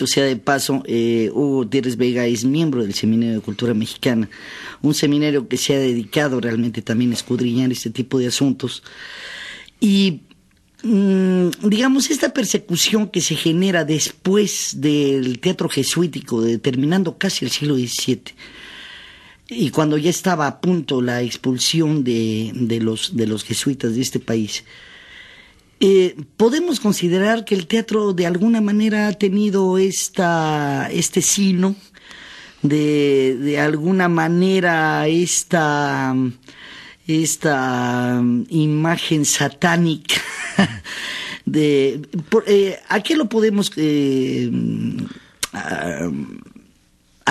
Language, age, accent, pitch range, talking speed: Spanish, 40-59, Mexican, 130-190 Hz, 115 wpm